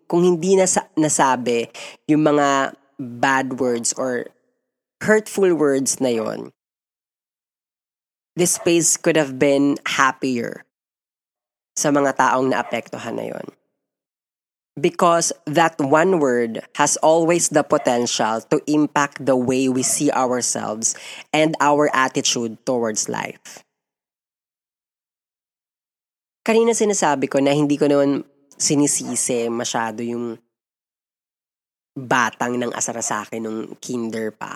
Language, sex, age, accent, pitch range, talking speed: Filipino, female, 20-39, native, 120-165 Hz, 110 wpm